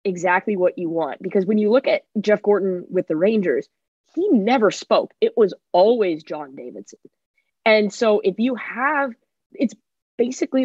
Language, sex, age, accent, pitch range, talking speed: English, female, 20-39, American, 180-240 Hz, 165 wpm